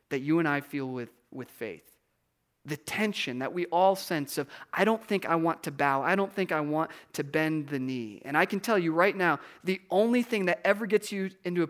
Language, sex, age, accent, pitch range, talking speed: English, male, 30-49, American, 135-185 Hz, 240 wpm